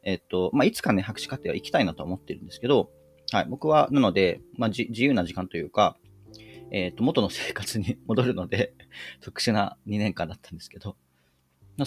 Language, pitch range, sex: Japanese, 85-130 Hz, male